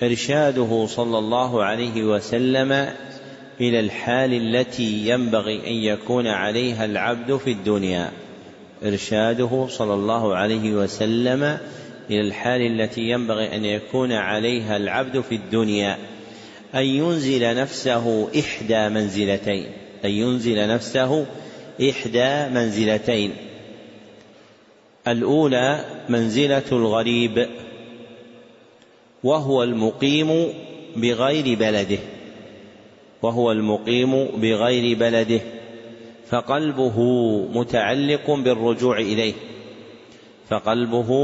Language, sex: Arabic, male